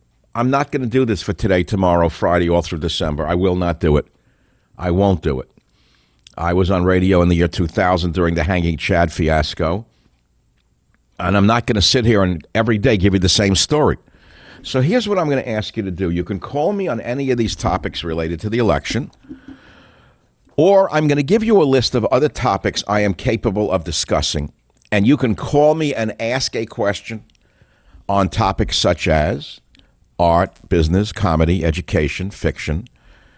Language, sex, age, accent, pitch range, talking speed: English, male, 60-79, American, 85-110 Hz, 190 wpm